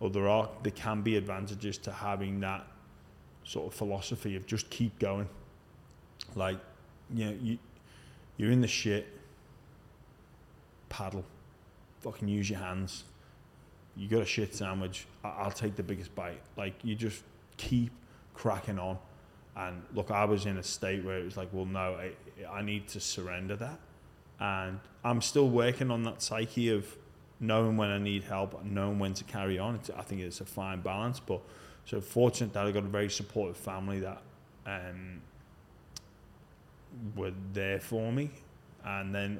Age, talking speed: 20-39, 170 wpm